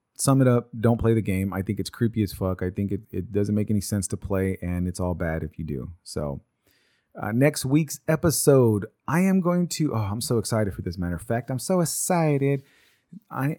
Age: 30-49